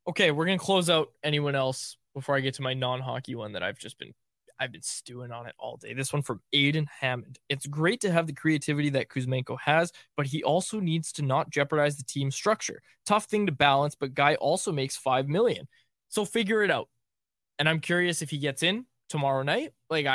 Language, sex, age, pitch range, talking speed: English, male, 20-39, 130-170 Hz, 220 wpm